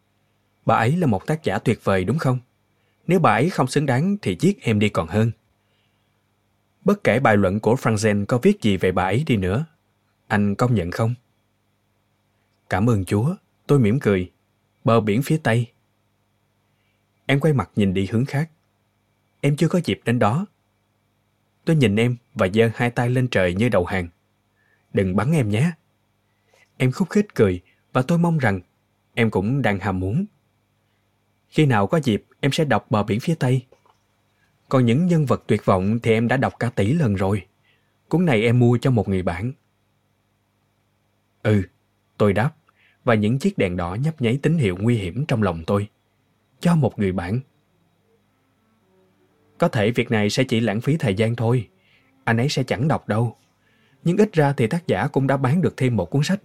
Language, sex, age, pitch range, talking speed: Vietnamese, male, 20-39, 100-130 Hz, 190 wpm